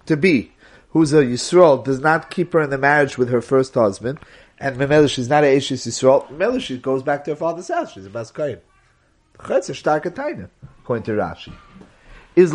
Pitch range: 130-175 Hz